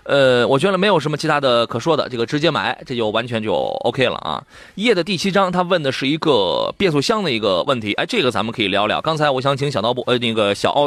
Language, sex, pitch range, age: Chinese, male, 115-175 Hz, 30-49